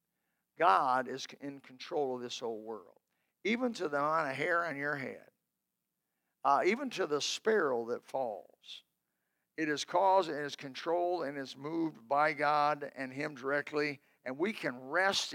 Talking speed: 165 wpm